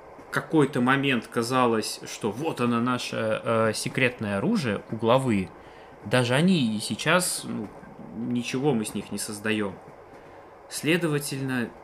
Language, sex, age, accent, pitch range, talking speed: Russian, male, 20-39, native, 110-150 Hz, 120 wpm